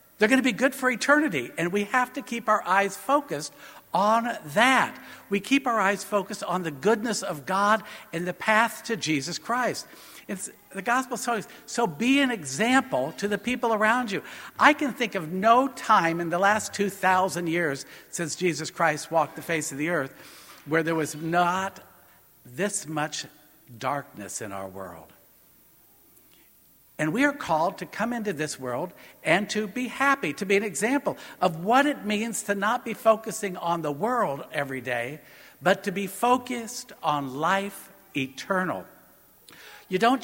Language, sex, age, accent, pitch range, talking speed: English, male, 60-79, American, 165-235 Hz, 170 wpm